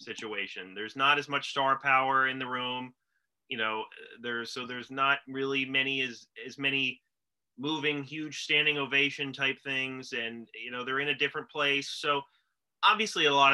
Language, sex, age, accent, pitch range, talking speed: English, male, 30-49, American, 125-150 Hz, 175 wpm